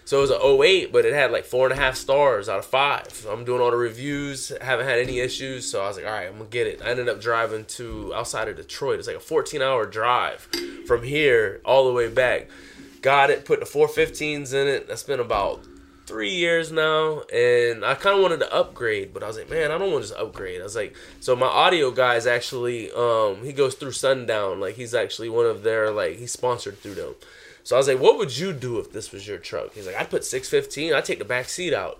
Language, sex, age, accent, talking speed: English, male, 20-39, American, 260 wpm